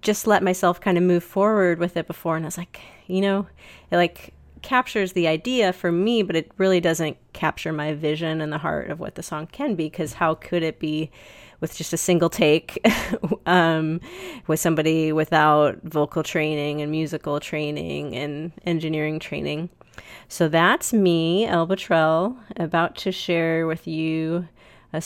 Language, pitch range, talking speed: English, 155-180 Hz, 170 wpm